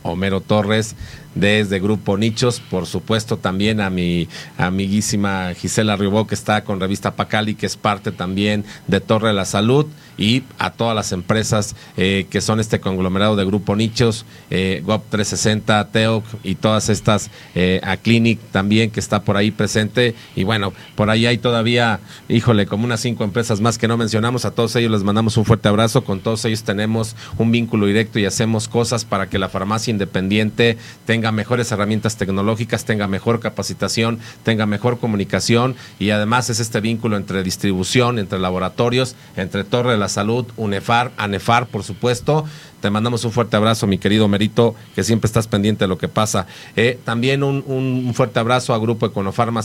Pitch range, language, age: 105-120 Hz, Spanish, 40-59